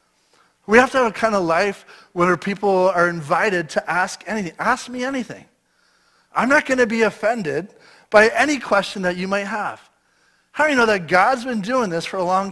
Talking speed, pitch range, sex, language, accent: 205 wpm, 175-230 Hz, male, English, American